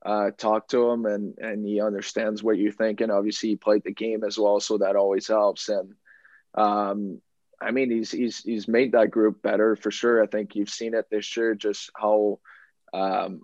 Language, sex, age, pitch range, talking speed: English, male, 20-39, 100-110 Hz, 205 wpm